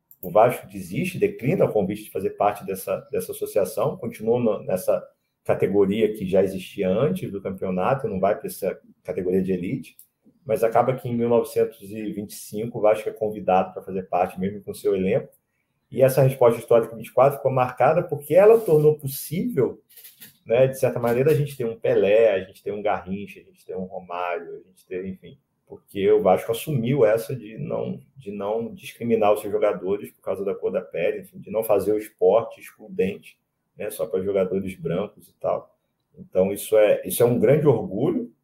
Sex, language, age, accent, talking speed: male, Portuguese, 40-59, Brazilian, 190 wpm